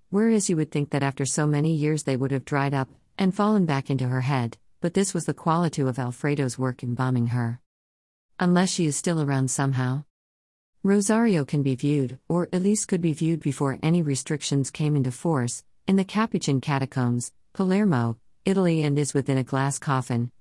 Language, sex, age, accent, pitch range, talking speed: English, female, 40-59, American, 125-165 Hz, 190 wpm